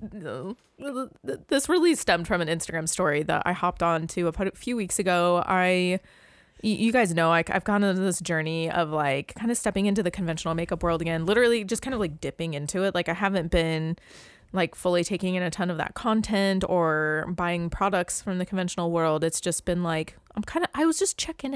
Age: 20-39